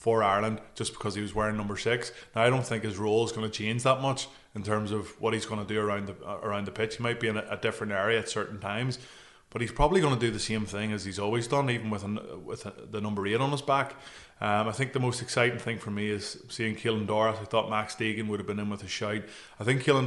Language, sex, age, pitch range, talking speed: English, male, 20-39, 105-115 Hz, 290 wpm